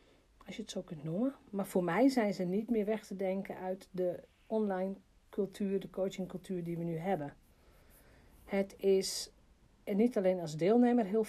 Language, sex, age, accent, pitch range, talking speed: Dutch, female, 40-59, Dutch, 180-230 Hz, 180 wpm